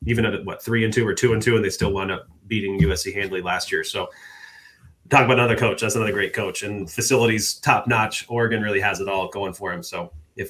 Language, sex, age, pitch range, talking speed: English, male, 30-49, 100-125 Hz, 240 wpm